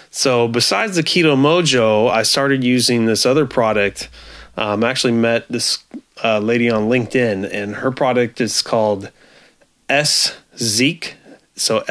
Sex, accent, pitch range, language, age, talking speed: male, American, 105-125 Hz, English, 30-49, 140 wpm